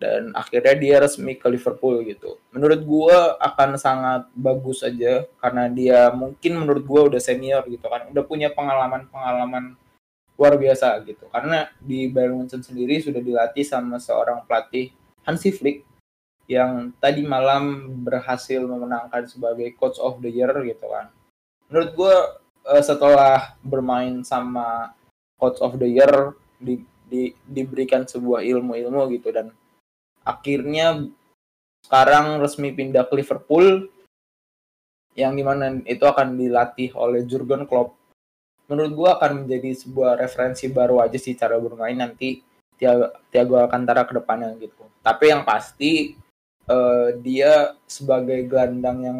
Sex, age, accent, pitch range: male, 20-39, native, 125-140 Hz